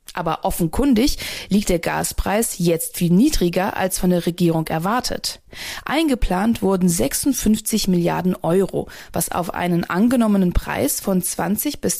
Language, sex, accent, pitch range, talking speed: German, female, German, 175-225 Hz, 130 wpm